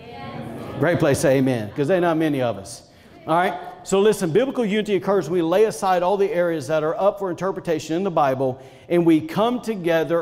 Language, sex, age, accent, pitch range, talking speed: English, male, 50-69, American, 140-190 Hz, 225 wpm